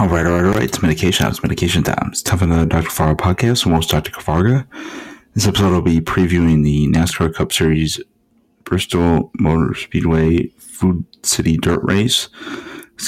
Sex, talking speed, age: male, 175 wpm, 30-49